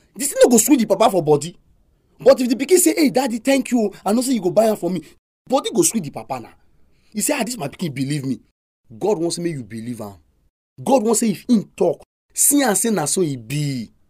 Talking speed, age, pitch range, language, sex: 245 wpm, 30-49, 140-230 Hz, English, male